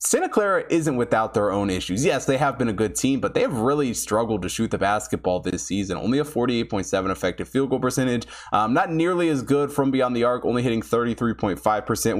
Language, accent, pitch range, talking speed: English, American, 100-125 Hz, 215 wpm